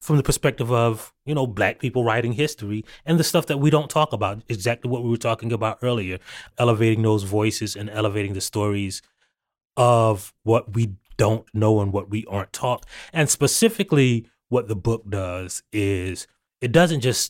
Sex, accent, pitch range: male, American, 100-125 Hz